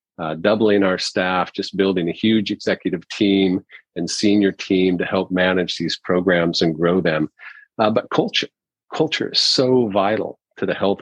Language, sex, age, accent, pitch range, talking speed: English, male, 40-59, American, 90-105 Hz, 170 wpm